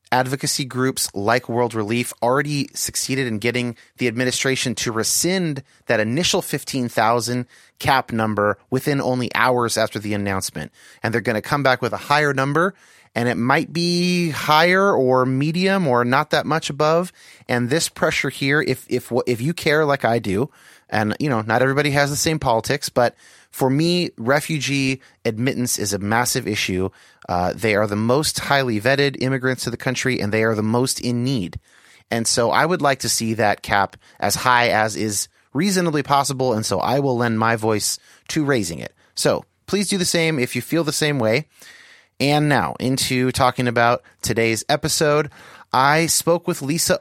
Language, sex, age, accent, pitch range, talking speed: English, male, 30-49, American, 115-150 Hz, 180 wpm